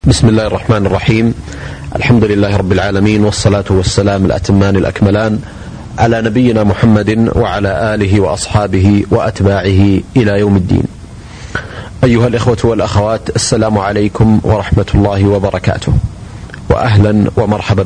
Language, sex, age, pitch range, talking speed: Arabic, male, 30-49, 100-115 Hz, 110 wpm